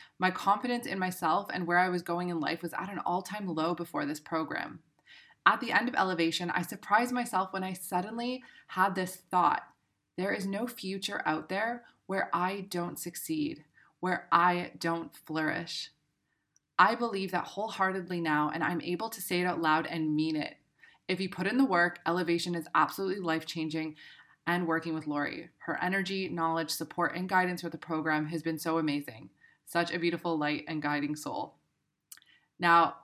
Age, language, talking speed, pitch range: 20-39, English, 180 wpm, 165-195 Hz